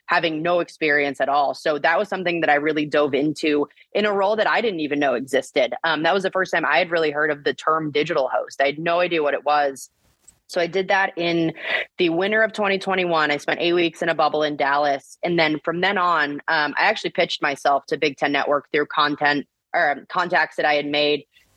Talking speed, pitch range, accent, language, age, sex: 240 wpm, 150-175 Hz, American, English, 20-39, female